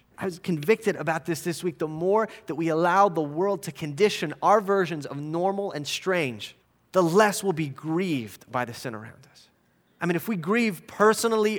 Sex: male